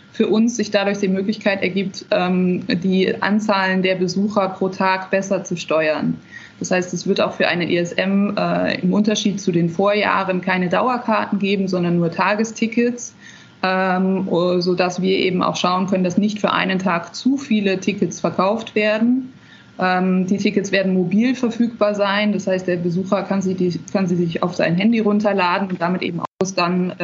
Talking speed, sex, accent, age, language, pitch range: 165 wpm, female, German, 20-39, German, 180-205 Hz